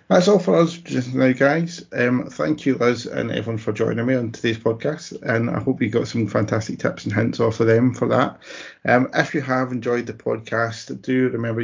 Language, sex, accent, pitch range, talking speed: English, male, British, 110-135 Hz, 220 wpm